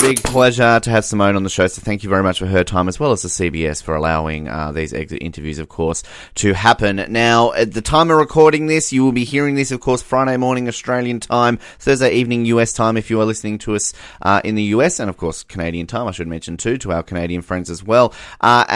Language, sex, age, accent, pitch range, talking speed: English, male, 30-49, Australian, 90-115 Hz, 255 wpm